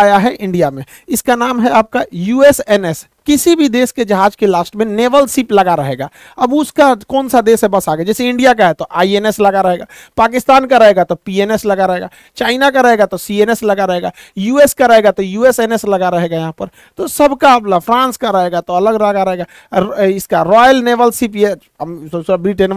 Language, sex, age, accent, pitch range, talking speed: Hindi, male, 50-69, native, 190-250 Hz, 115 wpm